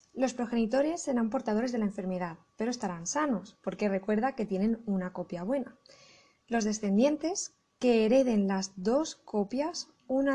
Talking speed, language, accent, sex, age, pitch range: 145 wpm, Spanish, Spanish, female, 20-39, 205-265 Hz